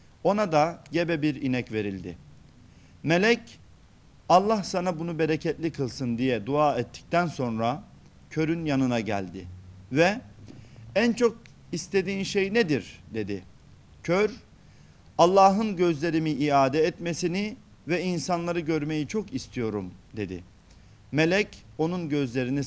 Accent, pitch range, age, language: native, 115-175 Hz, 50-69, Turkish